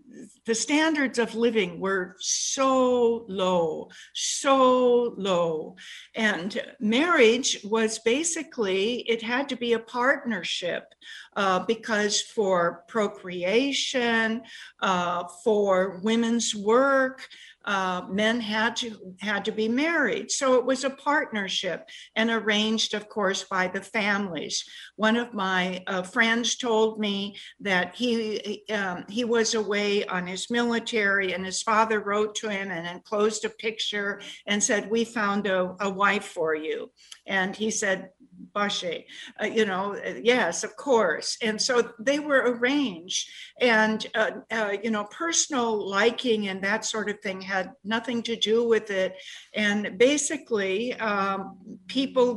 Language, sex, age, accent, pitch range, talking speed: English, female, 50-69, American, 200-240 Hz, 135 wpm